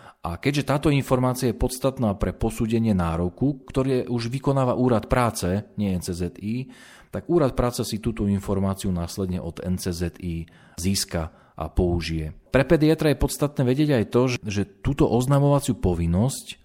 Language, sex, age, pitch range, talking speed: Slovak, male, 40-59, 90-115 Hz, 140 wpm